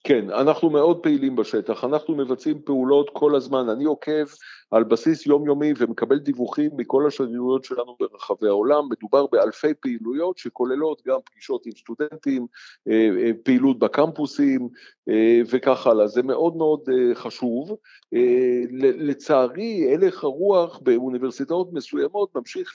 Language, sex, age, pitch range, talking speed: Hebrew, male, 50-69, 130-180 Hz, 115 wpm